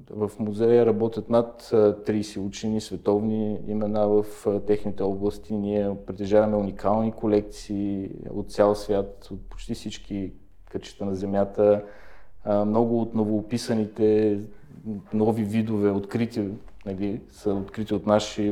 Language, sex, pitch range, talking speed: Bulgarian, male, 100-115 Hz, 110 wpm